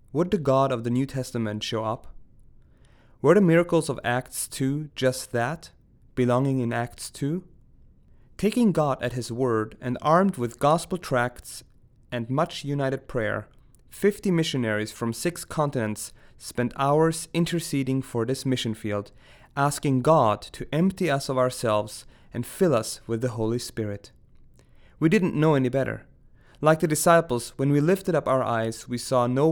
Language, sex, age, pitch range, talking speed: English, male, 30-49, 115-150 Hz, 160 wpm